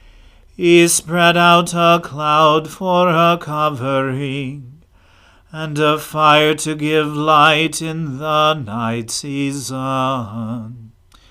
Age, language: 40-59, English